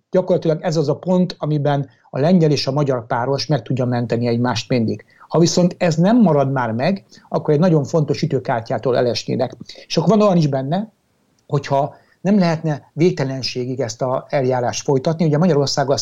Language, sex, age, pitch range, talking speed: Hungarian, male, 60-79, 135-170 Hz, 170 wpm